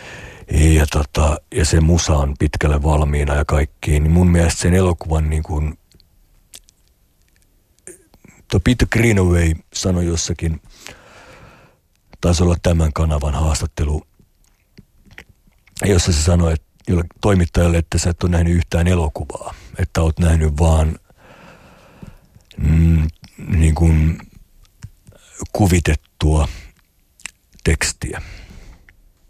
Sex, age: male, 60-79